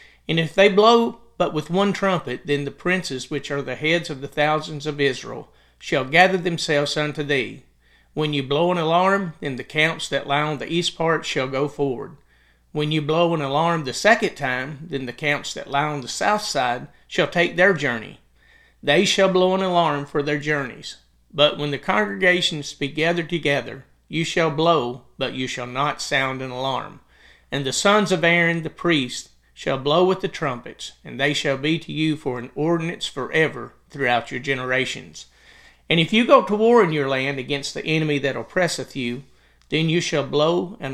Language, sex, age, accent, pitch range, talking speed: English, male, 40-59, American, 135-170 Hz, 195 wpm